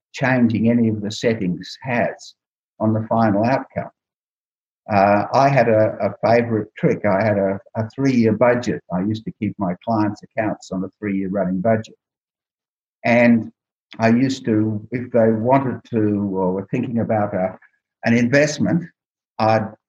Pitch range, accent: 105-125 Hz, Australian